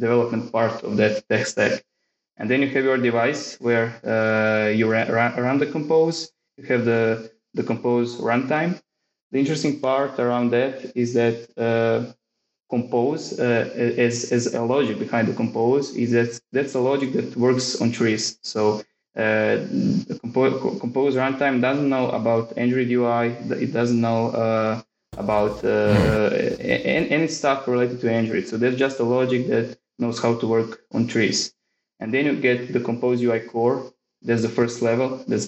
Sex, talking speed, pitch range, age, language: male, 170 wpm, 110-125 Hz, 20-39, English